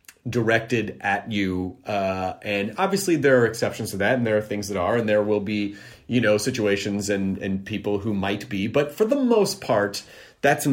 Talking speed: 200 wpm